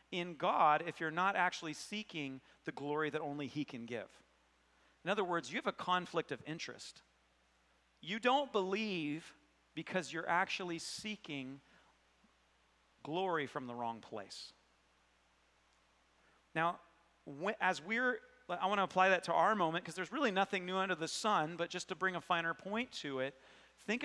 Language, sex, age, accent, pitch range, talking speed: English, male, 40-59, American, 150-190 Hz, 160 wpm